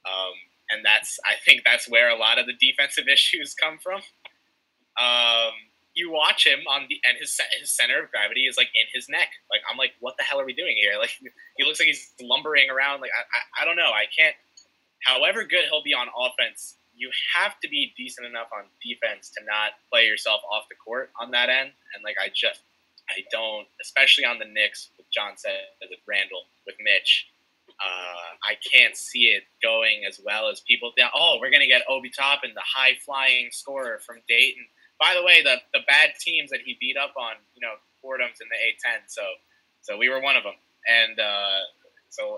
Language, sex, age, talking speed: English, male, 20-39, 210 wpm